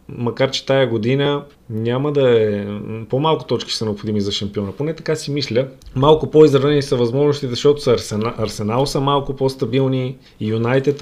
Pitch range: 110-140 Hz